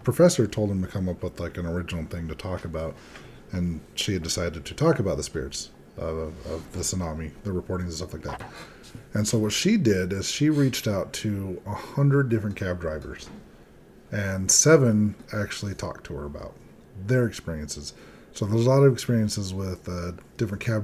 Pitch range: 95-120 Hz